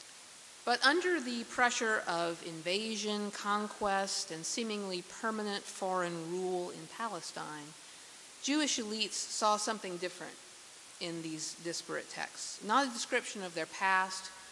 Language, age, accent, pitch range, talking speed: English, 50-69, American, 180-235 Hz, 120 wpm